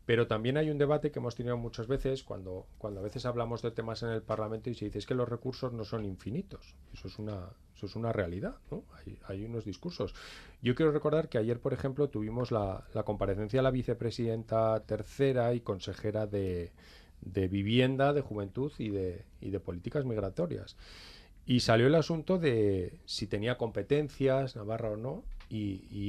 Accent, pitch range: Spanish, 100-130 Hz